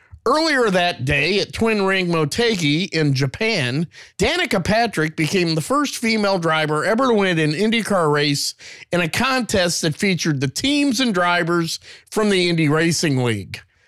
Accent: American